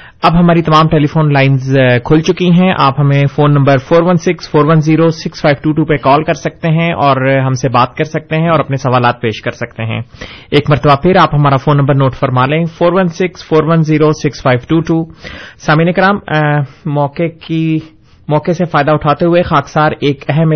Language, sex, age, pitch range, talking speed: Urdu, male, 30-49, 135-160 Hz, 170 wpm